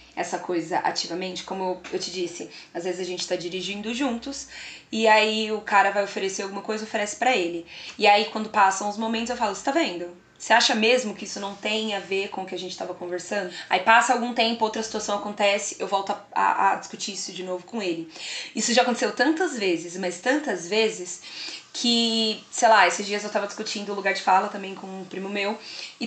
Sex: female